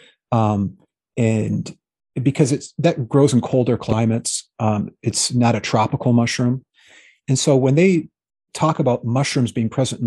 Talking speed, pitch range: 150 wpm, 110-140 Hz